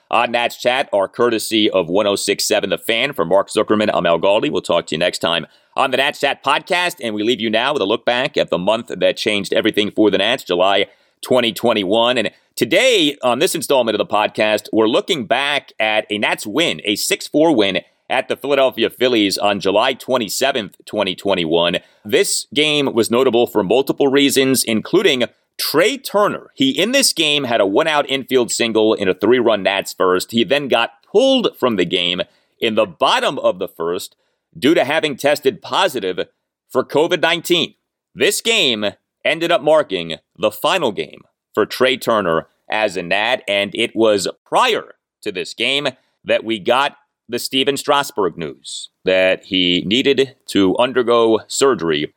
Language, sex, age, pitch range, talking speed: English, male, 30-49, 105-140 Hz, 175 wpm